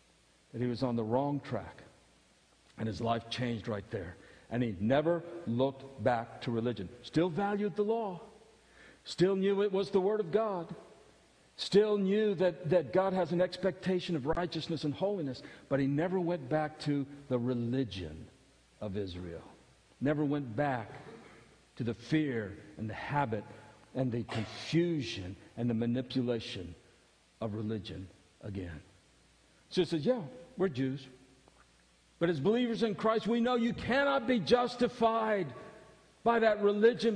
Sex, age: male, 50-69